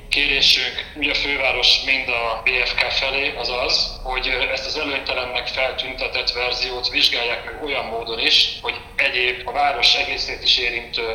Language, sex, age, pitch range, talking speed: Hungarian, male, 30-49, 115-135 Hz, 150 wpm